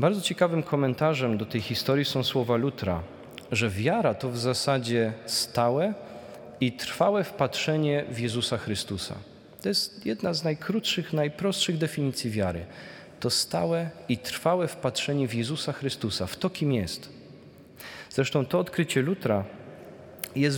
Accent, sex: native, male